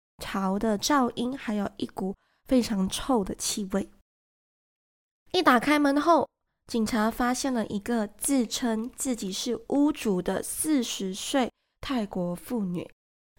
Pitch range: 205-280 Hz